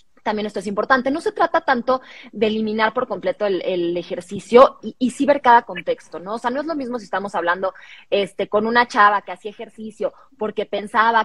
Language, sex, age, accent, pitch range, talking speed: Spanish, female, 20-39, Mexican, 205-255 Hz, 215 wpm